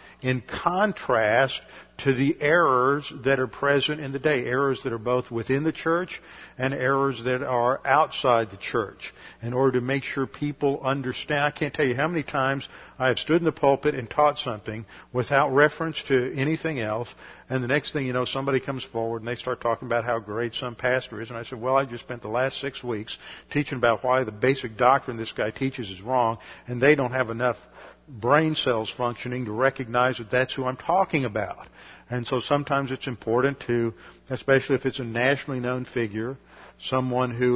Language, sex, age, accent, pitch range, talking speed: English, male, 50-69, American, 120-140 Hz, 200 wpm